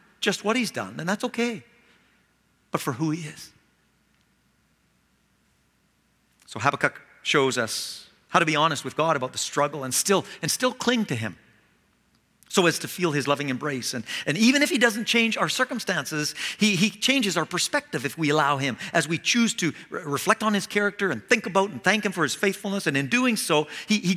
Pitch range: 145-225 Hz